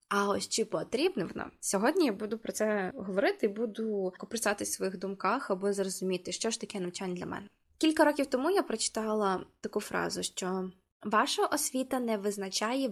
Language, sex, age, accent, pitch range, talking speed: Ukrainian, female, 20-39, native, 195-240 Hz, 170 wpm